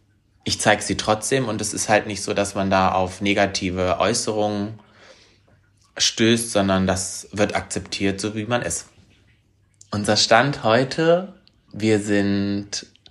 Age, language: 30-49, German